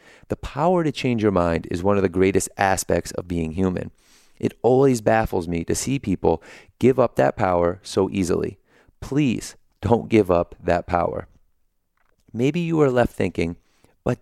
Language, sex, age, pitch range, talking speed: English, male, 30-49, 90-125 Hz, 170 wpm